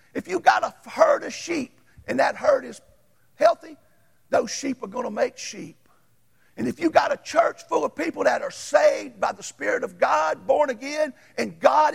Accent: American